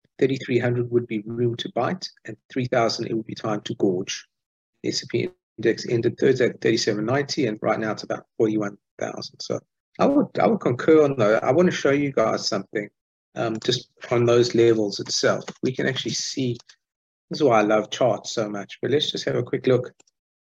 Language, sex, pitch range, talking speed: English, male, 105-125 Hz, 195 wpm